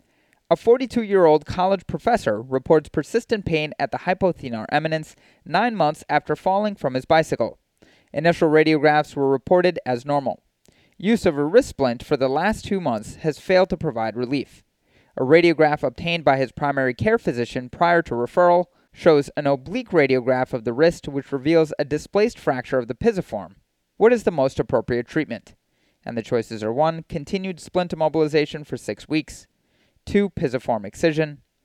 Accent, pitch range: American, 130-175 Hz